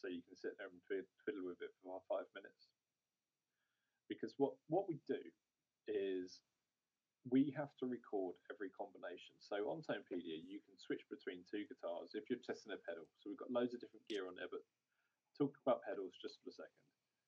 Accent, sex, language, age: British, male, English, 30-49